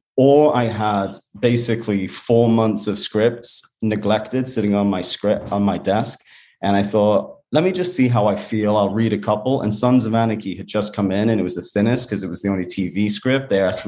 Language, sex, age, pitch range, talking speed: English, male, 30-49, 105-120 Hz, 225 wpm